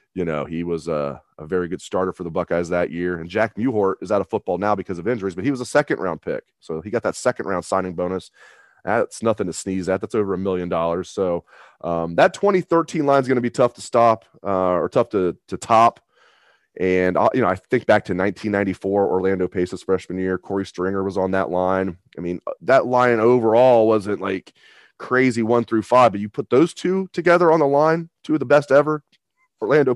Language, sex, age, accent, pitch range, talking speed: English, male, 30-49, American, 90-125 Hz, 220 wpm